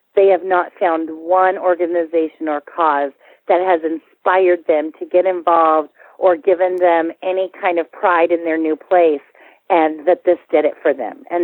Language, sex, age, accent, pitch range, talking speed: English, female, 40-59, American, 155-195 Hz, 180 wpm